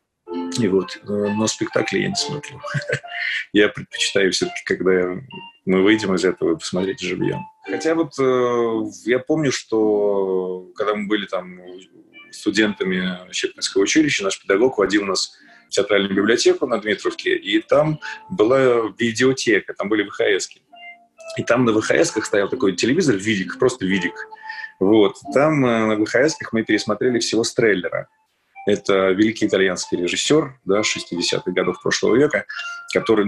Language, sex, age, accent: Russian, male, 30-49, native